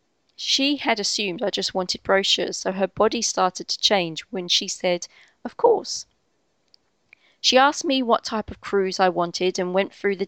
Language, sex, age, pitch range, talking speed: English, female, 30-49, 185-230 Hz, 180 wpm